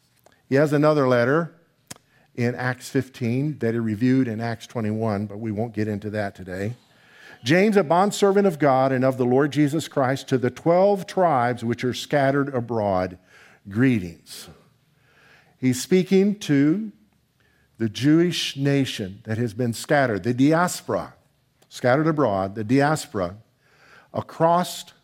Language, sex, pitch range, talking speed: English, male, 120-155 Hz, 135 wpm